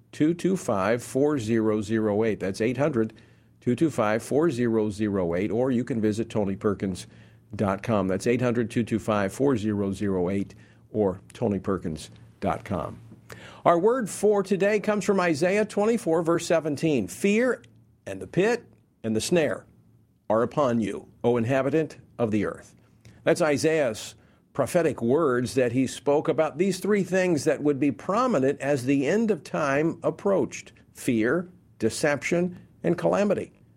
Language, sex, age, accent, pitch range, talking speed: English, male, 50-69, American, 110-160 Hz, 110 wpm